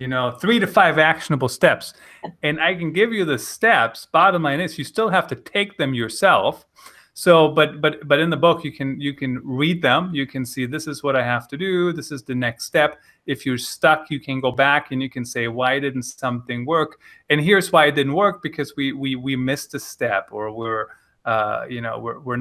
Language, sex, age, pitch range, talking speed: English, male, 30-49, 125-160 Hz, 235 wpm